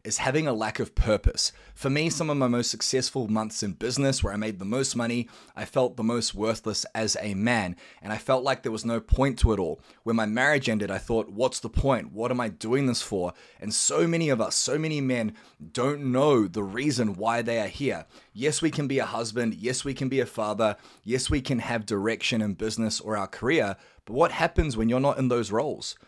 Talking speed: 235 wpm